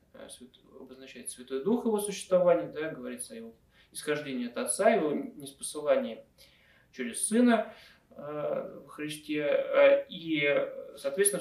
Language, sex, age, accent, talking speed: Russian, male, 20-39, native, 110 wpm